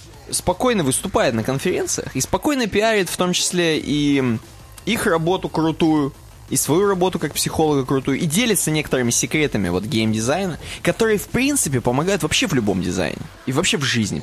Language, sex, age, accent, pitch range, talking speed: Russian, male, 20-39, native, 115-180 Hz, 160 wpm